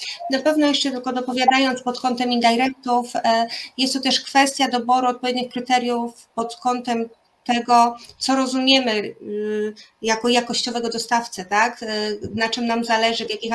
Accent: native